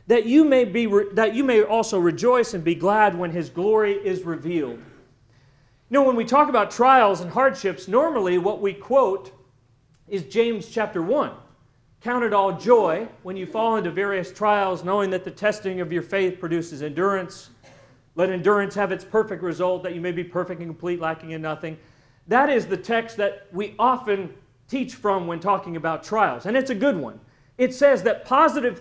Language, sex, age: English, male, 40-59